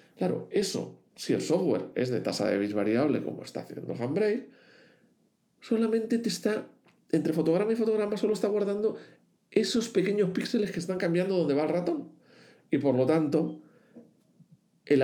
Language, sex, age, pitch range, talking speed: Spanish, male, 50-69, 140-215 Hz, 160 wpm